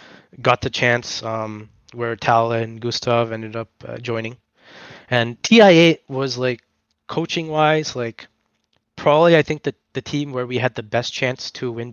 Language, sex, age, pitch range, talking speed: English, male, 20-39, 115-135 Hz, 165 wpm